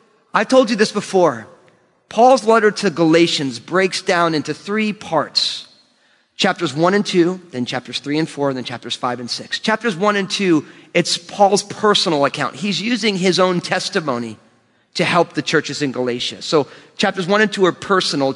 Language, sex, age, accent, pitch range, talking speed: English, male, 30-49, American, 150-200 Hz, 180 wpm